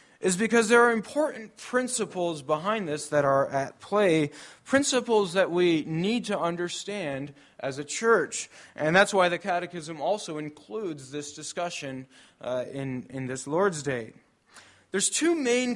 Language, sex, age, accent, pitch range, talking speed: English, male, 20-39, American, 140-200 Hz, 150 wpm